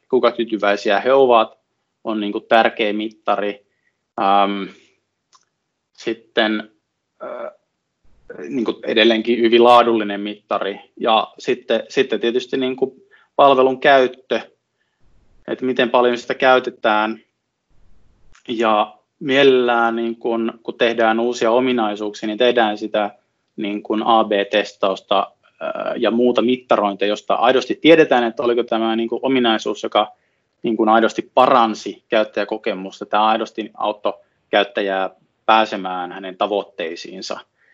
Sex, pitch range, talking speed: male, 105-120 Hz, 90 wpm